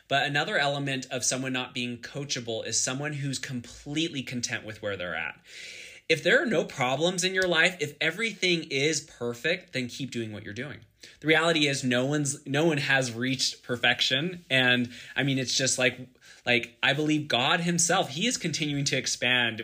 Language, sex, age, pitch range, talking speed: English, male, 20-39, 120-150 Hz, 185 wpm